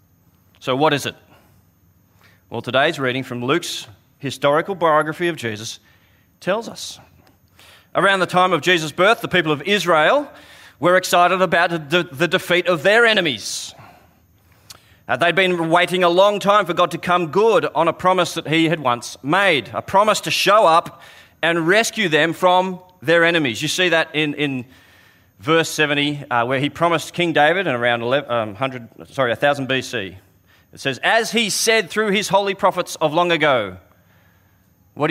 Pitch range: 105-175 Hz